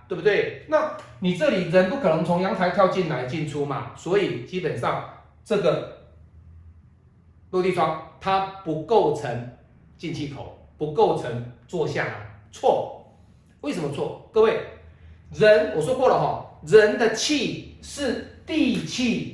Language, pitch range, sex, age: Chinese, 135-225 Hz, male, 30-49